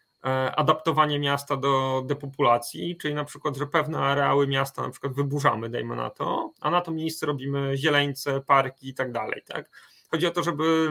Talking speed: 170 wpm